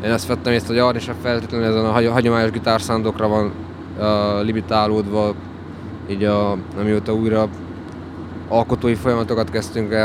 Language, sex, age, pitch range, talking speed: Hungarian, male, 20-39, 95-115 Hz, 150 wpm